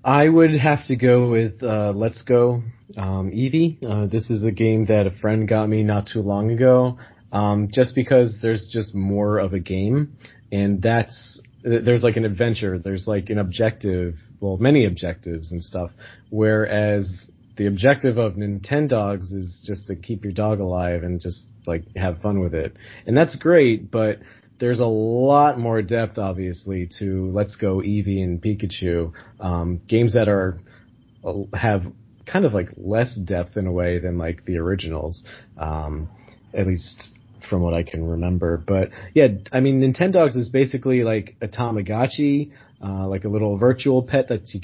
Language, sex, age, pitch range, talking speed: English, male, 30-49, 95-120 Hz, 170 wpm